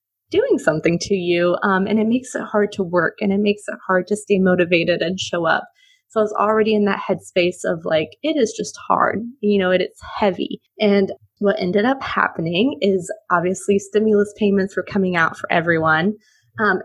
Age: 20-39